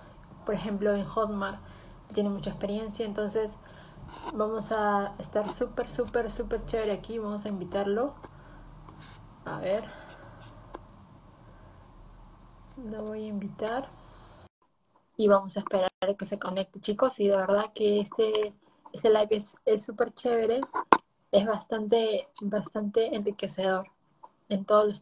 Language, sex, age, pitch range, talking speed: Spanish, female, 20-39, 200-235 Hz, 125 wpm